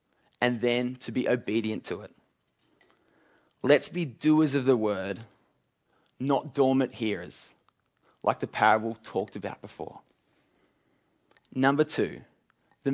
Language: English